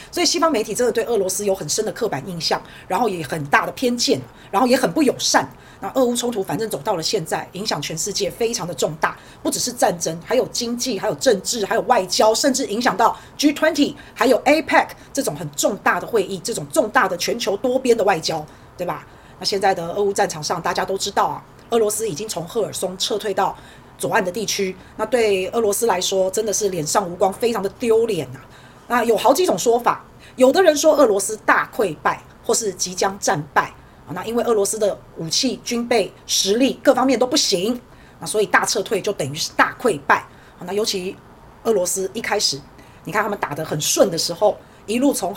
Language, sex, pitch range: Chinese, female, 190-240 Hz